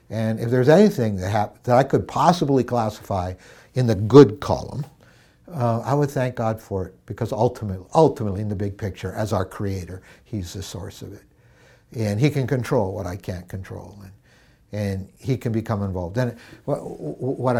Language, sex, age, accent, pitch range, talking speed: English, male, 60-79, American, 100-120 Hz, 180 wpm